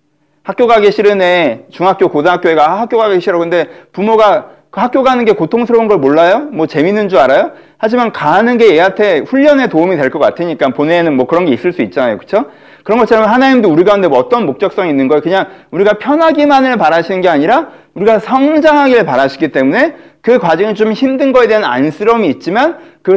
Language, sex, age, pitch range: Korean, male, 40-59, 170-255 Hz